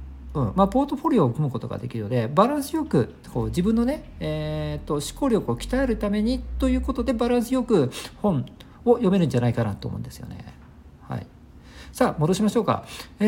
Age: 50-69